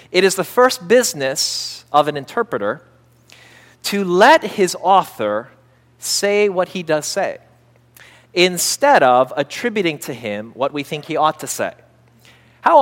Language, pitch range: English, 155-220 Hz